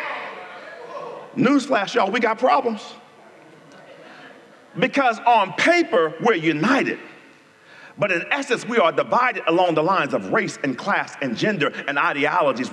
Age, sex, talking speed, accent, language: 40-59, male, 125 wpm, American, English